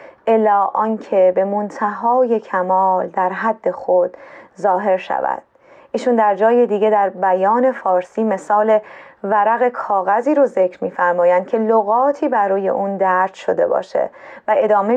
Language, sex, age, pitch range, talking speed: Persian, female, 20-39, 190-245 Hz, 130 wpm